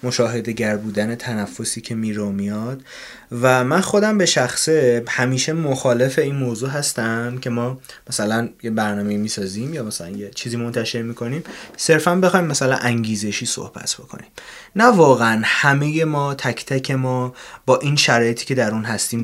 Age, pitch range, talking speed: 20-39, 115-145 Hz, 160 wpm